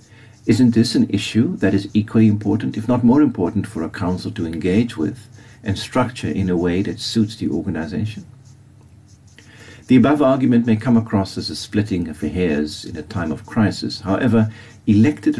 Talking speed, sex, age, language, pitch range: 180 wpm, male, 50-69, English, 95-115 Hz